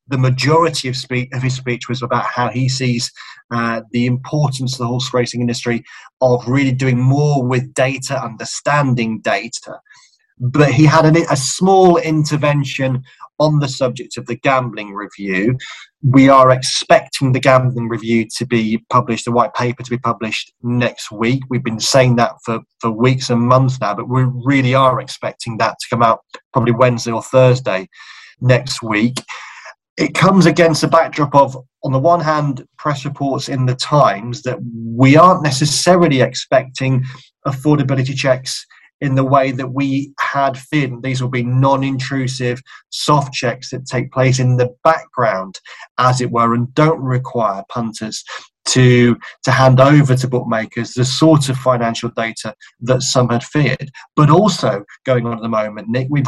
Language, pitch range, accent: English, 120-135 Hz, British